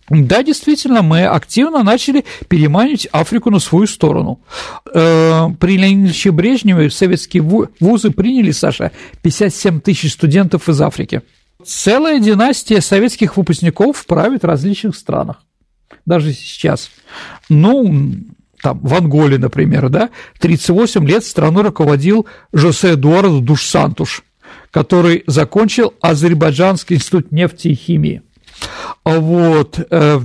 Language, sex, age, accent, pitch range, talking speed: Russian, male, 50-69, native, 155-195 Hz, 110 wpm